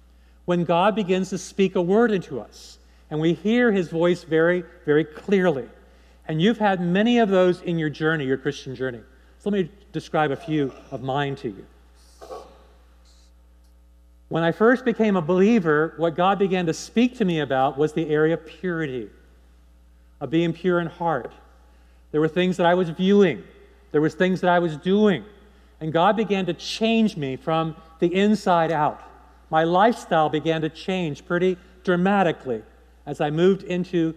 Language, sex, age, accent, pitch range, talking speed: English, male, 50-69, American, 135-190 Hz, 170 wpm